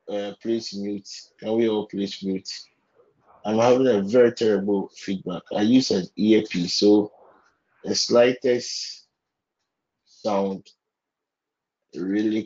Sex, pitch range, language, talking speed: male, 95-115 Hz, English, 110 wpm